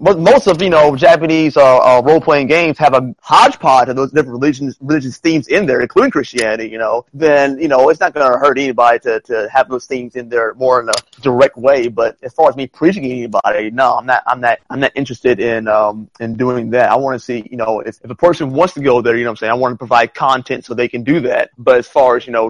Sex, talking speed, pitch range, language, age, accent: male, 265 wpm, 120-165 Hz, English, 30-49, American